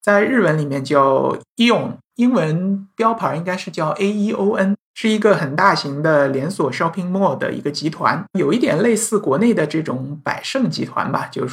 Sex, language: male, Chinese